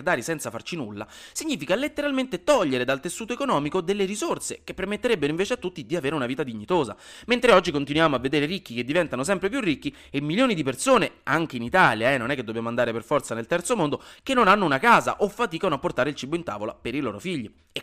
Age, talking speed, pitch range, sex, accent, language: 30-49, 230 wpm, 120-175 Hz, male, native, Italian